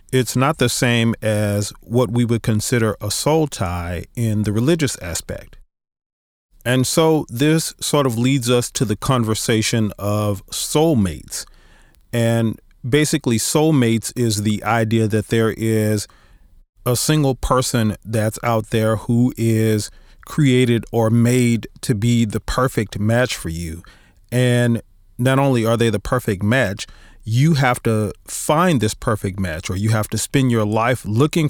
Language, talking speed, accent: English, 150 wpm, American